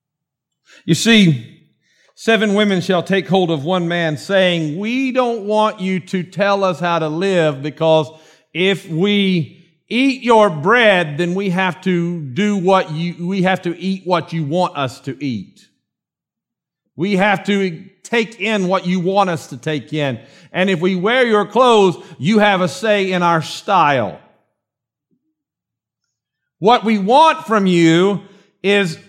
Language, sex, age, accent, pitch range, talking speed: English, male, 50-69, American, 175-230 Hz, 155 wpm